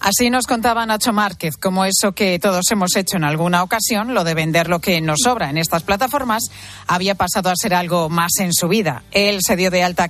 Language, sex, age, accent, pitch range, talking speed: Spanish, female, 40-59, Spanish, 175-230 Hz, 225 wpm